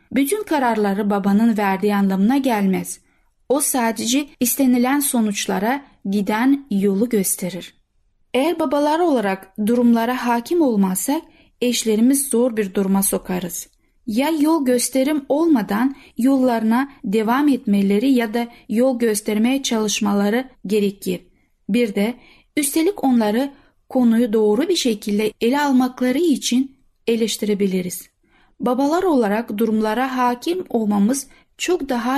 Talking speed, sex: 105 wpm, female